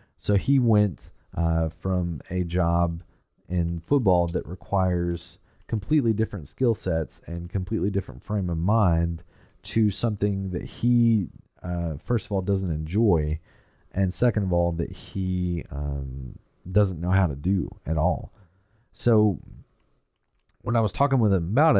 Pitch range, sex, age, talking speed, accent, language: 85-105 Hz, male, 30-49, 145 wpm, American, English